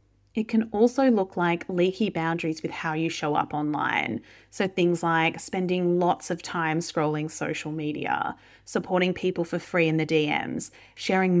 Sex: female